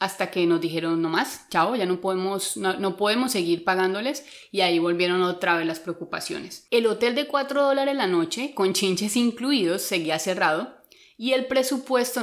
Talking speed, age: 180 wpm, 30-49